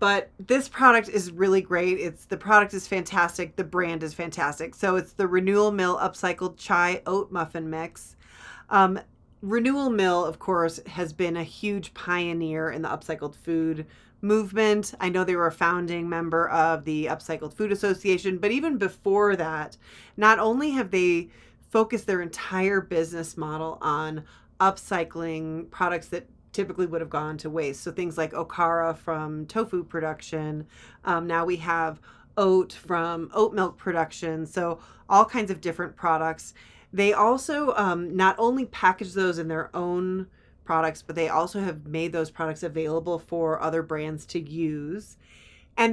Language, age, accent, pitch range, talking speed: English, 30-49, American, 165-200 Hz, 160 wpm